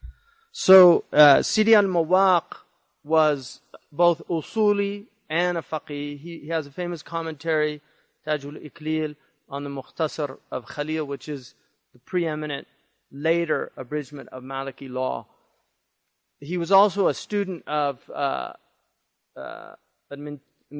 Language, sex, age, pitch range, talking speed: English, male, 30-49, 145-175 Hz, 115 wpm